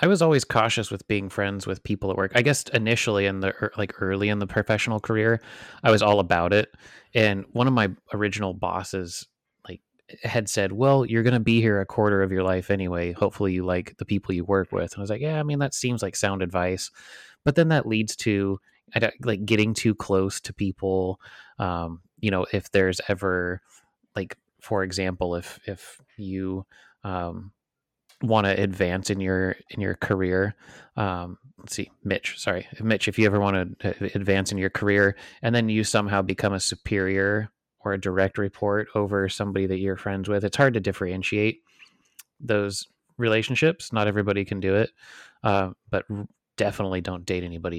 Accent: American